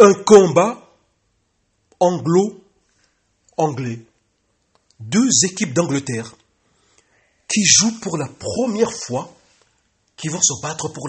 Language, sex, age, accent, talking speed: English, male, 60-79, French, 90 wpm